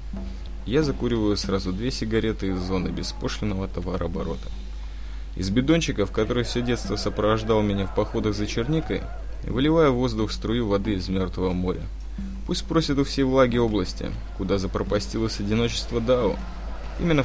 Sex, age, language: male, 20-39, Russian